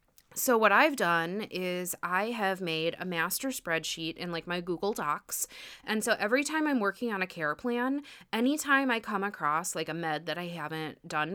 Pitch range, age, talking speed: 170-235 Hz, 30-49, 195 wpm